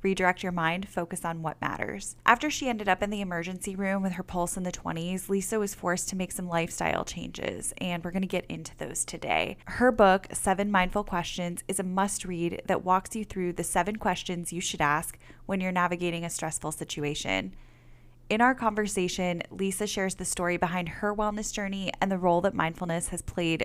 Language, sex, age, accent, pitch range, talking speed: English, female, 10-29, American, 170-200 Hz, 200 wpm